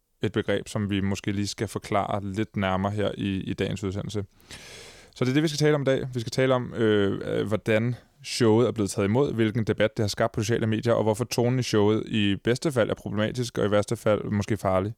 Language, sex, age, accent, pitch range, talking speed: Danish, male, 20-39, native, 100-115 Hz, 240 wpm